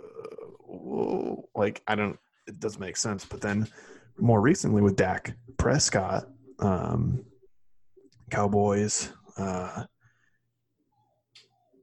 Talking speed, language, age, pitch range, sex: 85 wpm, English, 20-39, 95-115 Hz, male